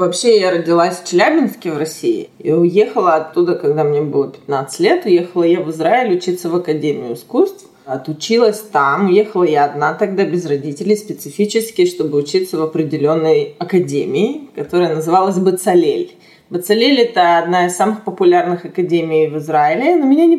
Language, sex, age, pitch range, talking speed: Russian, female, 20-39, 170-245 Hz, 155 wpm